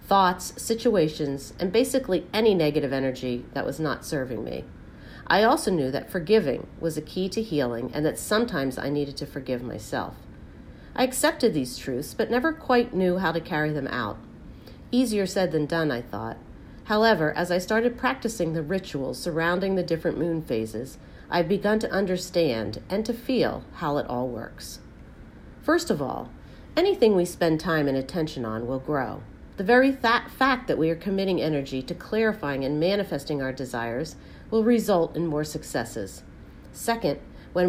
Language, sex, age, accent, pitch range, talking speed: English, female, 40-59, American, 135-200 Hz, 165 wpm